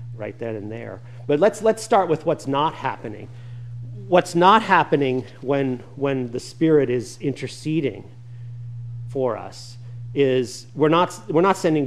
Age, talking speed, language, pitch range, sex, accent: 40-59, 145 wpm, English, 120-150 Hz, male, American